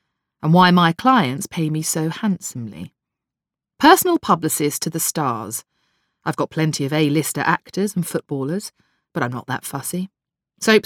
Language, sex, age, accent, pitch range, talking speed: English, female, 40-59, British, 150-195 Hz, 150 wpm